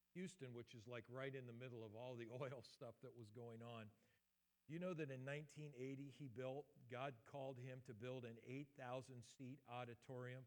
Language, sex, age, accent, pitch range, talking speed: English, male, 50-69, American, 110-135 Hz, 185 wpm